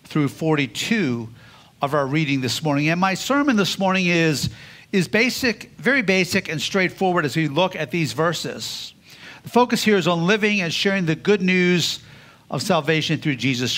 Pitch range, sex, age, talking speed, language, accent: 150-200 Hz, male, 50-69, 175 wpm, English, American